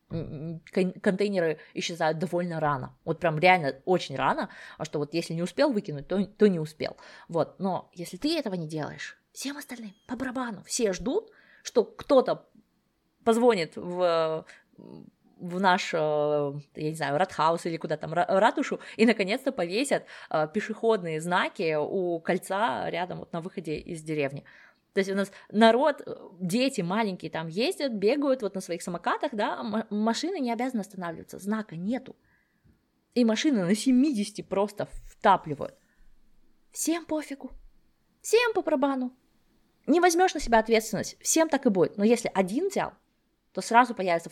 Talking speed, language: 145 wpm, Russian